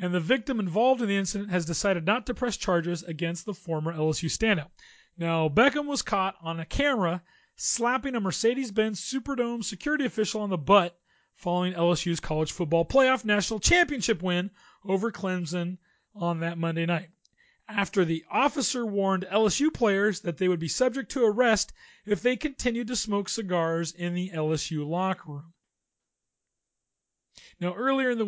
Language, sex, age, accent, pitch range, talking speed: English, male, 40-59, American, 175-230 Hz, 160 wpm